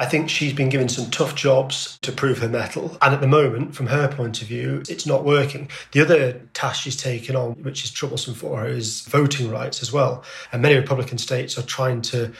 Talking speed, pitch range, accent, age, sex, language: 230 wpm, 120-135 Hz, British, 30-49, male, English